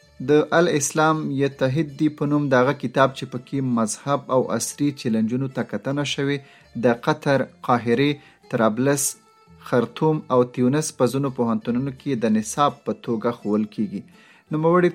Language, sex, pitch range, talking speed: Urdu, male, 120-150 Hz, 140 wpm